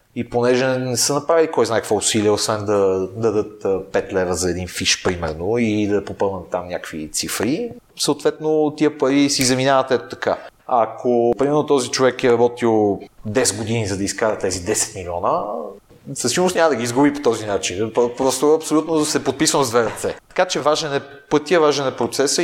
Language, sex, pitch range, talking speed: Bulgarian, male, 110-150 Hz, 190 wpm